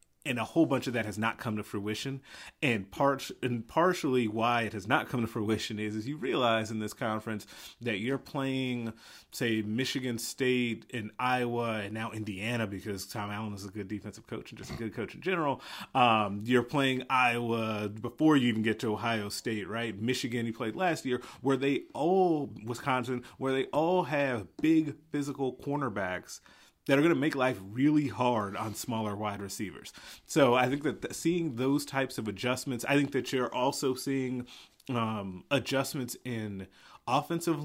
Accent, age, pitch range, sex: American, 30-49, 110-130 Hz, male